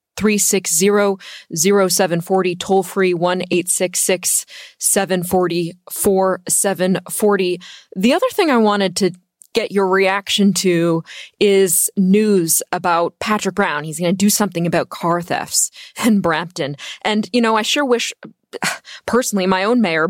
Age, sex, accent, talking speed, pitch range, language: 20-39, female, American, 115 wpm, 175-215 Hz, English